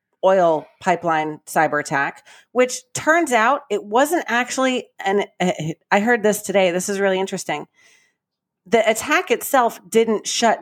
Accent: American